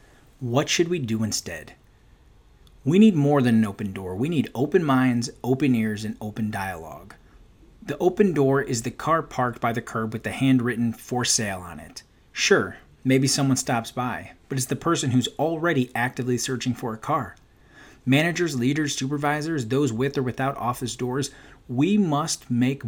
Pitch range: 115-140 Hz